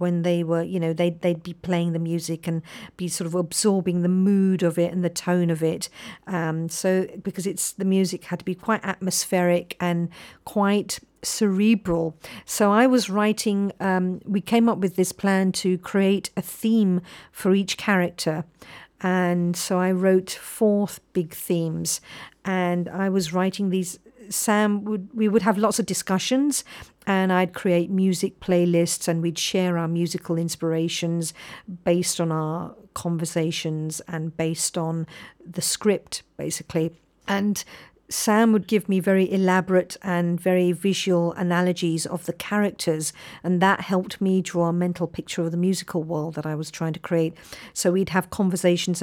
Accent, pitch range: British, 170-195 Hz